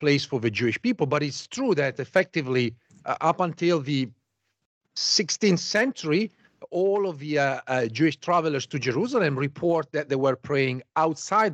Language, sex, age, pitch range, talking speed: English, male, 40-59, 130-175 Hz, 160 wpm